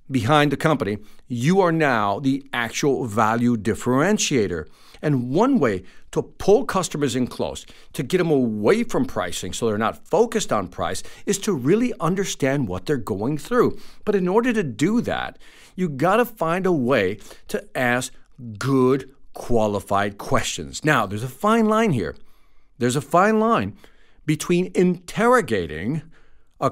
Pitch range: 120-180 Hz